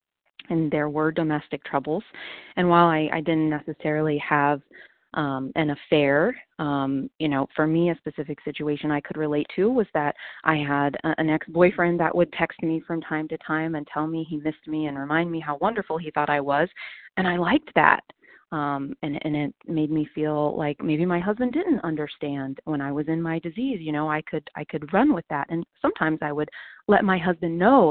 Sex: female